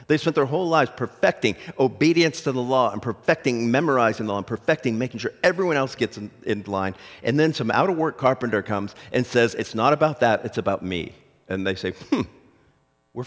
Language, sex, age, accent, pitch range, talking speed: English, male, 50-69, American, 90-135 Hz, 215 wpm